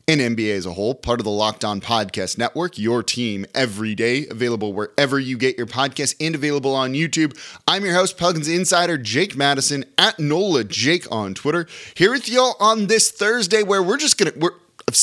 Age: 20-39